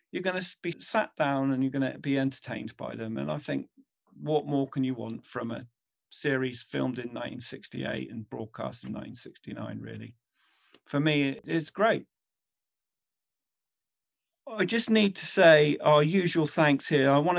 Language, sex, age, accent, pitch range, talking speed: English, male, 40-59, British, 130-155 Hz, 165 wpm